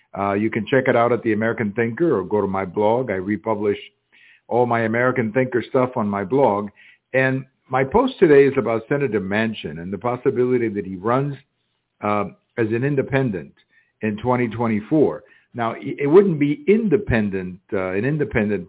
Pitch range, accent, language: 105-130 Hz, American, English